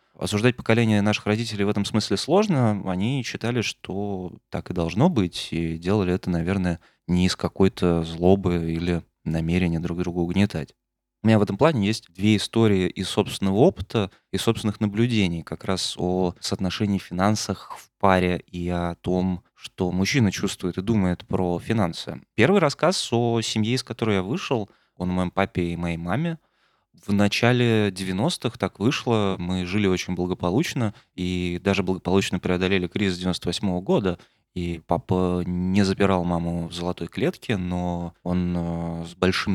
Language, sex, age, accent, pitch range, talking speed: Russian, male, 20-39, native, 90-110 Hz, 155 wpm